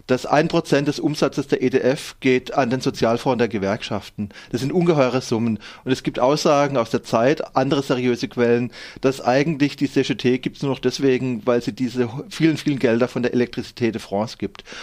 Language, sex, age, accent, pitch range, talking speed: German, male, 30-49, German, 125-145 Hz, 190 wpm